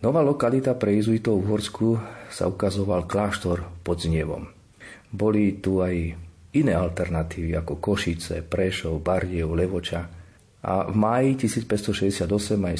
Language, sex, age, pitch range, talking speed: Slovak, male, 40-59, 85-105 Hz, 120 wpm